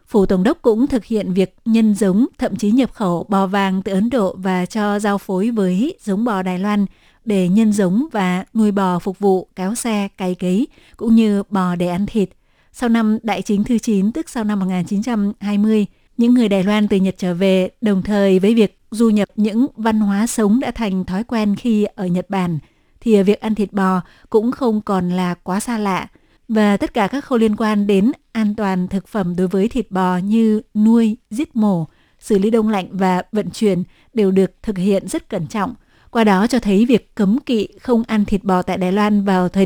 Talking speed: 215 wpm